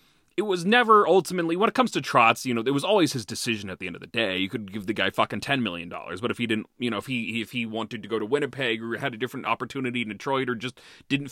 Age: 30-49